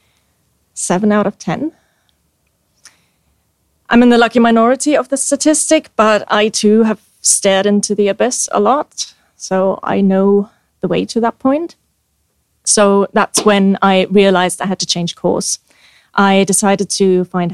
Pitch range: 185-220 Hz